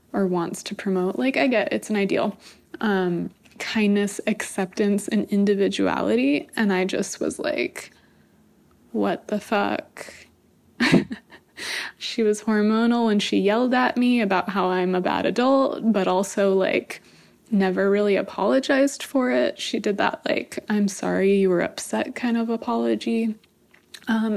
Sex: female